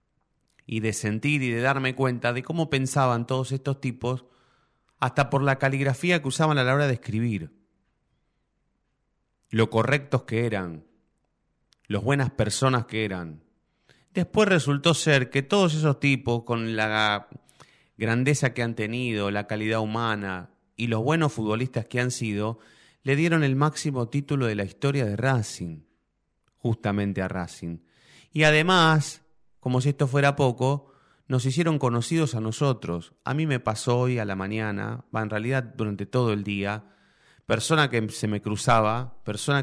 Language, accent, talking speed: Spanish, Argentinian, 155 wpm